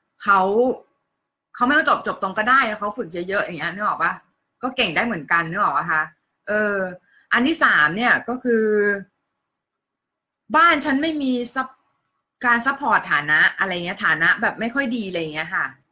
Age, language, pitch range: 20-39, Thai, 195-245 Hz